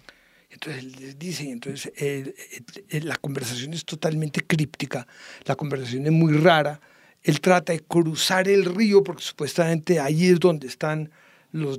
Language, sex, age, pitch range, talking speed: English, male, 60-79, 140-180 Hz, 150 wpm